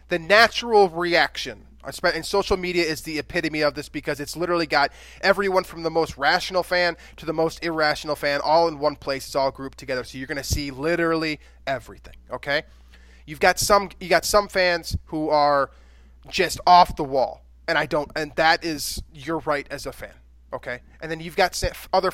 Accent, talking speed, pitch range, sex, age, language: American, 195 wpm, 135-180 Hz, male, 20-39, English